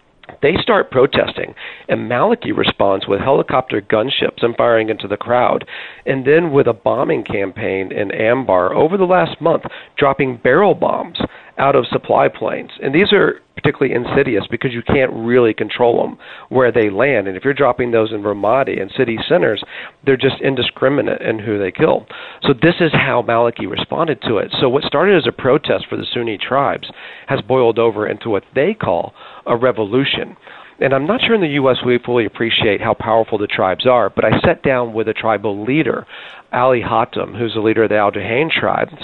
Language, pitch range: English, 110-140 Hz